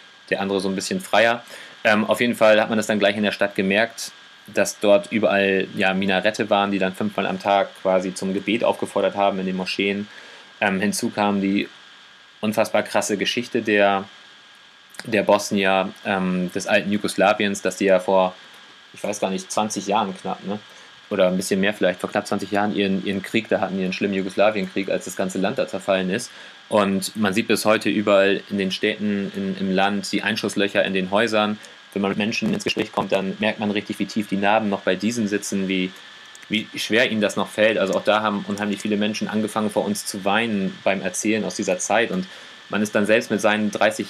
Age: 30-49